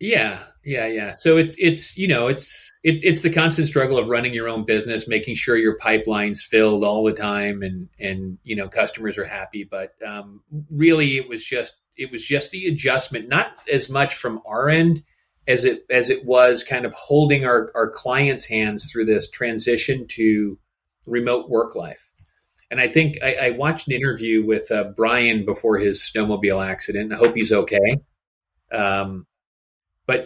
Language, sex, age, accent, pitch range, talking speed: English, male, 30-49, American, 115-150 Hz, 180 wpm